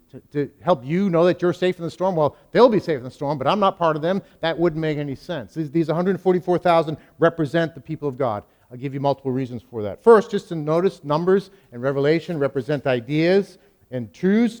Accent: American